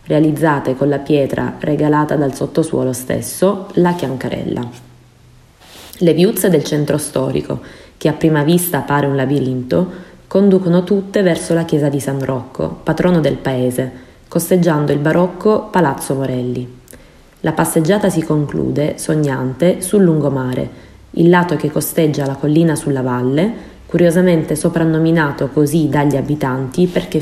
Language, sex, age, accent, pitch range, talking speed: Italian, female, 20-39, native, 140-175 Hz, 130 wpm